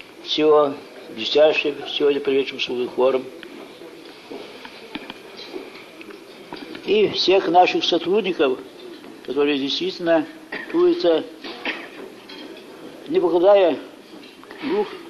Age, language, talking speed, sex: 60-79, English, 65 wpm, male